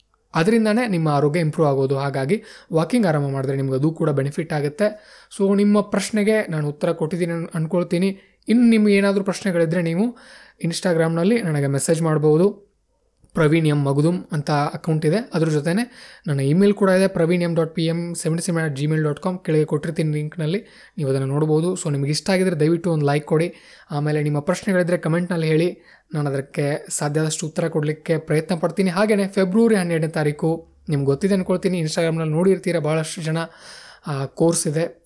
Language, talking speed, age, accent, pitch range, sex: Kannada, 155 wpm, 20-39, native, 150-185 Hz, male